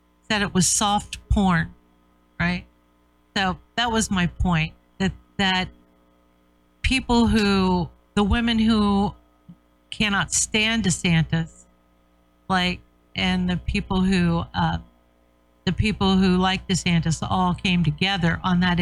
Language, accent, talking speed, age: English, American, 120 wpm, 50-69